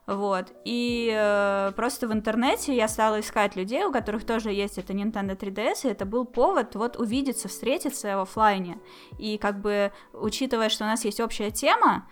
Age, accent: 10-29, native